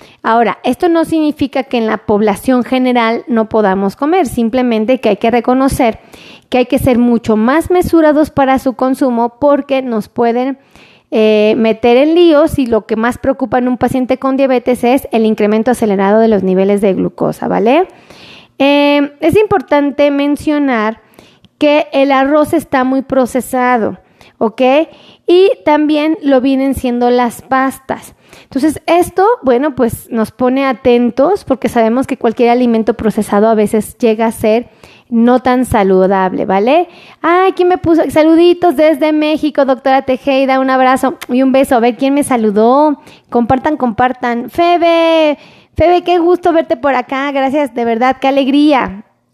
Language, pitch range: Spanish, 235-305 Hz